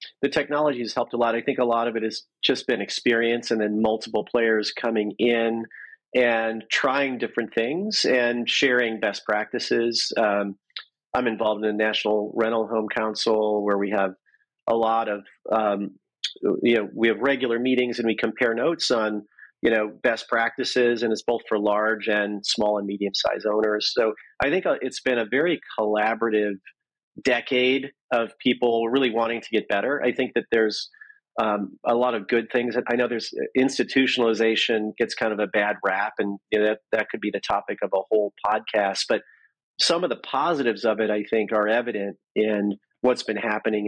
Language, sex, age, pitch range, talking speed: English, male, 40-59, 105-120 Hz, 185 wpm